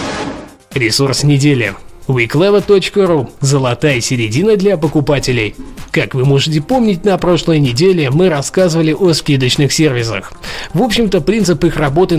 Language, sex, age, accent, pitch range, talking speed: Russian, male, 20-39, native, 140-180 Hz, 120 wpm